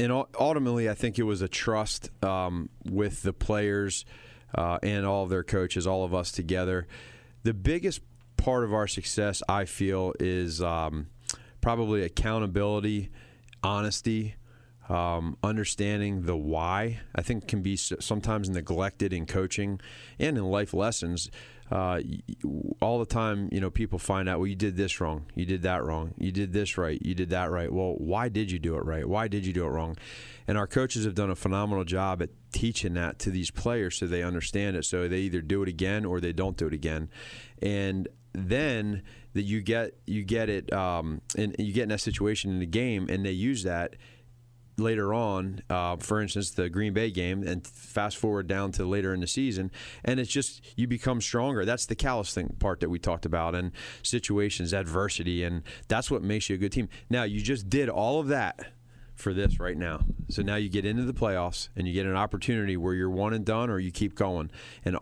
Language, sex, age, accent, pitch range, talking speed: English, male, 30-49, American, 90-115 Hz, 200 wpm